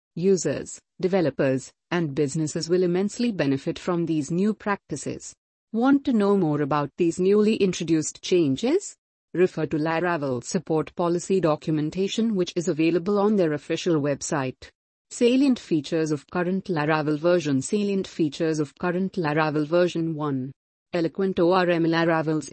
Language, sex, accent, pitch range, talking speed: English, female, Indian, 155-195 Hz, 130 wpm